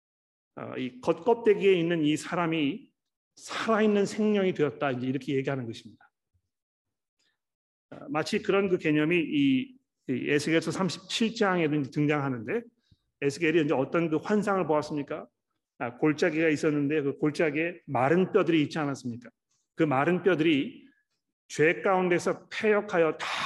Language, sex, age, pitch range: Korean, male, 40-59, 150-200 Hz